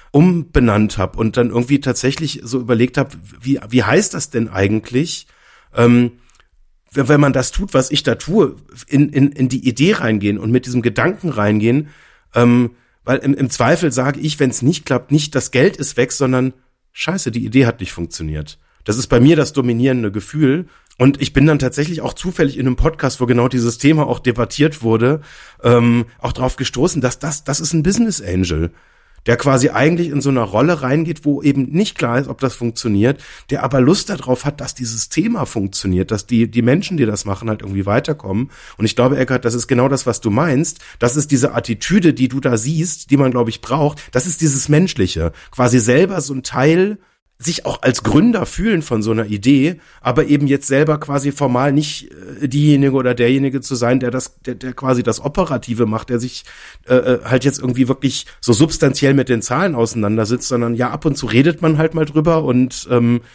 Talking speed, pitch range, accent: 205 wpm, 120-145 Hz, German